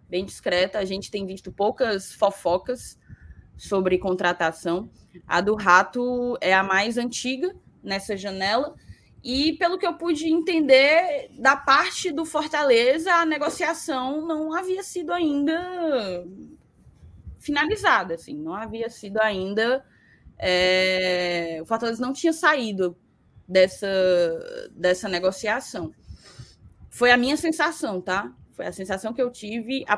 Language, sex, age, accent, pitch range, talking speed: Portuguese, female, 10-29, Brazilian, 190-295 Hz, 120 wpm